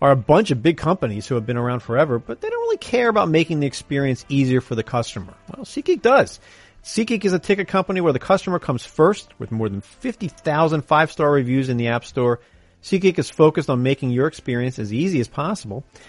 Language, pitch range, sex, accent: English, 120-180 Hz, male, American